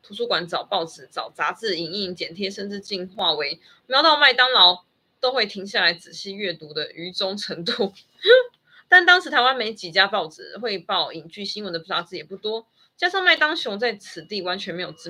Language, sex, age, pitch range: Chinese, female, 20-39, 180-275 Hz